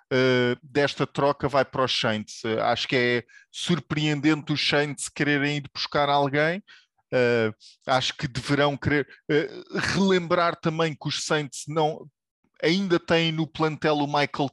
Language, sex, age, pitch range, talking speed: English, male, 20-39, 130-155 Hz, 150 wpm